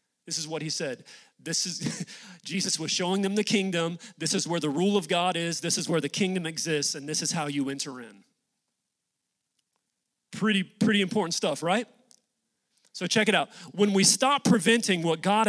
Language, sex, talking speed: English, male, 190 wpm